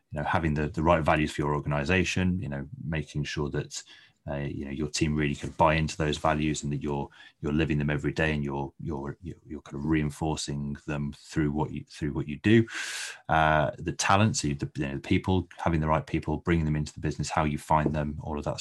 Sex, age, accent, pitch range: male, 30-49, British, 75-85 Hz